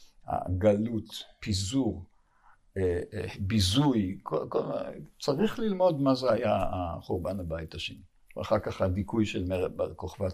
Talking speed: 95 wpm